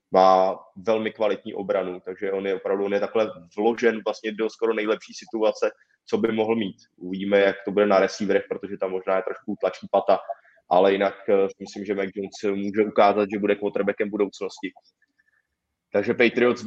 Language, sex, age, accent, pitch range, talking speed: Czech, male, 20-39, native, 100-115 Hz, 175 wpm